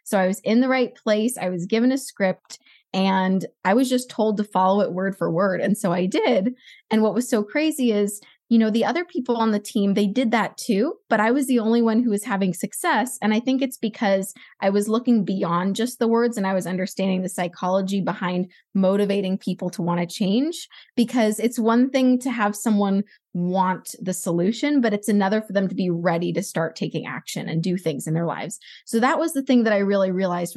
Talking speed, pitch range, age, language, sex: 230 wpm, 190-240 Hz, 20-39, English, female